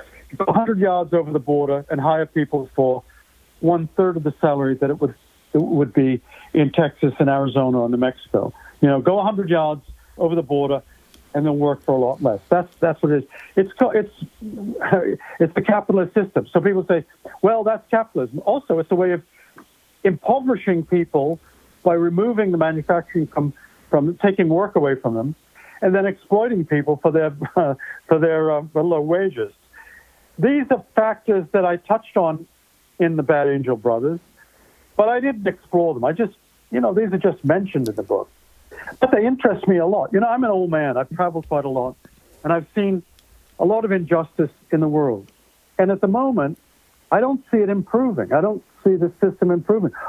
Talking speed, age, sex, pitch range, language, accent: 190 wpm, 60-79, male, 155-205 Hz, English, American